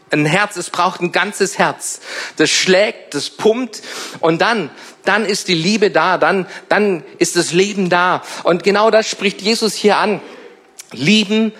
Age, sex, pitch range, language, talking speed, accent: 50-69, male, 165-215 Hz, German, 165 wpm, German